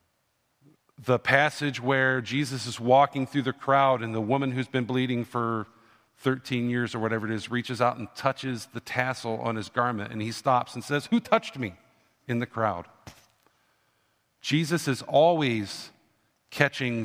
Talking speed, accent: 160 wpm, American